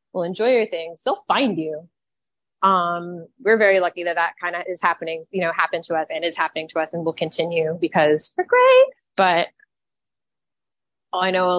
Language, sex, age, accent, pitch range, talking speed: English, female, 20-39, American, 165-200 Hz, 190 wpm